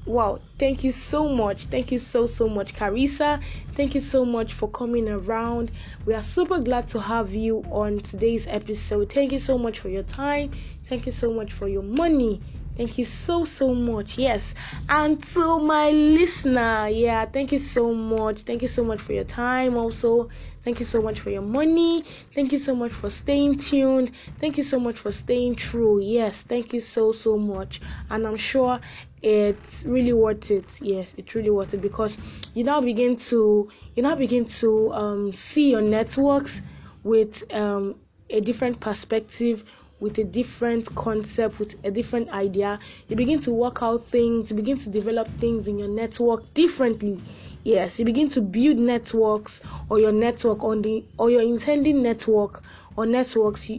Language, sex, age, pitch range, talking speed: English, female, 10-29, 215-255 Hz, 180 wpm